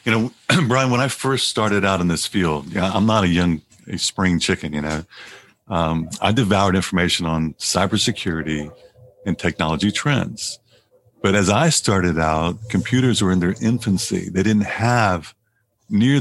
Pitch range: 90-110 Hz